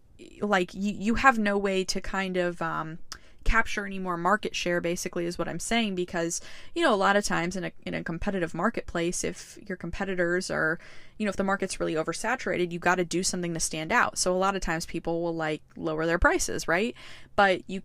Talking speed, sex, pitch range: 220 wpm, female, 175-220 Hz